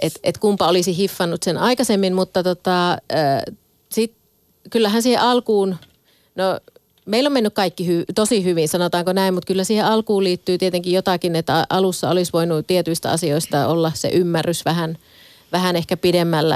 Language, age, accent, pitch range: Finnish, 30-49, native, 160-185 Hz